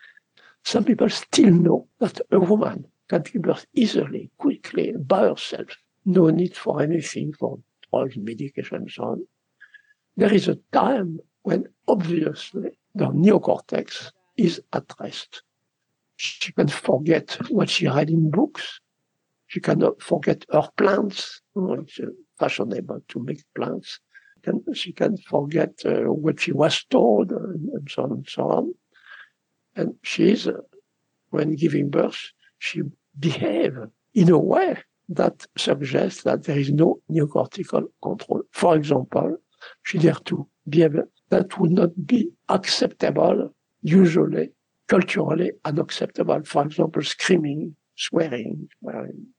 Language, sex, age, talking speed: English, male, 60-79, 135 wpm